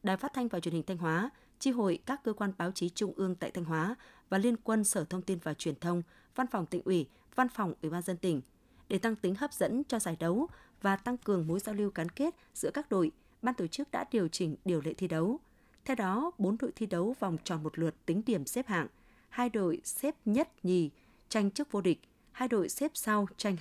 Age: 20-39